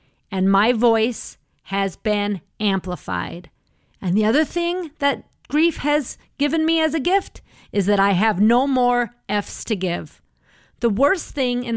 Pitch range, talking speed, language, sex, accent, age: 200-255 Hz, 160 wpm, English, female, American, 40-59